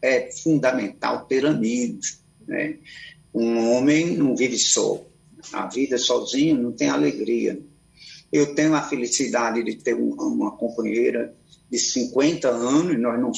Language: Portuguese